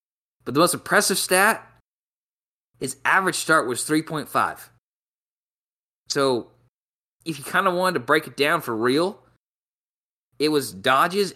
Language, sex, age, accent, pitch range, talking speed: English, male, 20-39, American, 115-160 Hz, 130 wpm